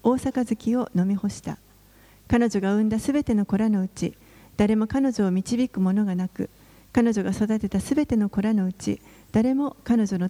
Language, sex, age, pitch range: Japanese, female, 40-59, 190-235 Hz